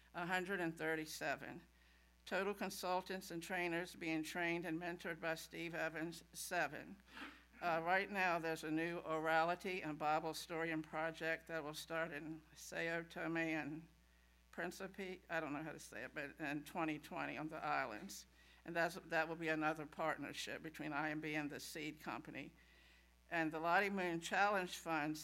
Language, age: English, 60-79